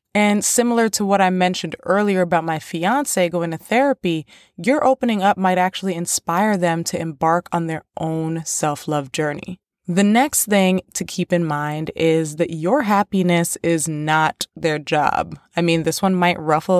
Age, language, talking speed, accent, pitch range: 20-39, English, 170 wpm, American, 160-200 Hz